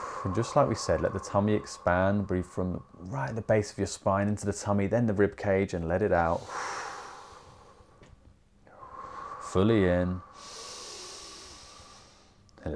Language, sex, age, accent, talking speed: English, male, 30-49, British, 145 wpm